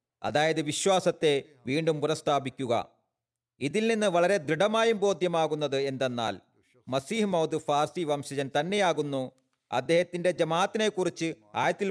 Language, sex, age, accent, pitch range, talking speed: Malayalam, male, 40-59, native, 135-185 Hz, 90 wpm